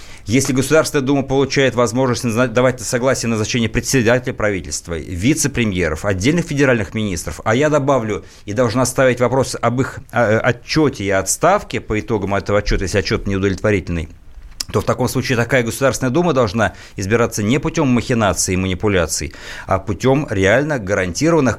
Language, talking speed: Russian, 145 wpm